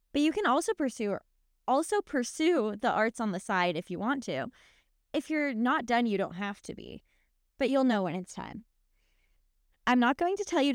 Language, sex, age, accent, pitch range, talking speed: English, female, 20-39, American, 200-290 Hz, 205 wpm